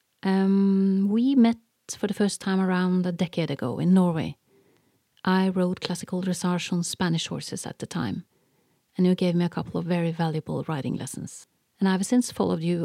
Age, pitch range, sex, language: 40-59, 165-190 Hz, female, English